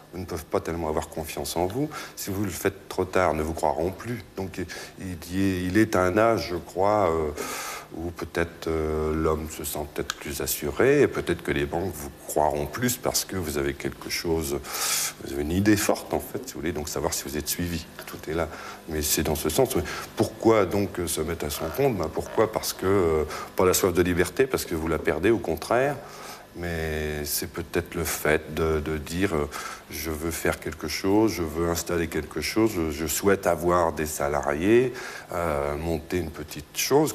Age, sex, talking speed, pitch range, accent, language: 60-79, male, 210 wpm, 80-100 Hz, French, German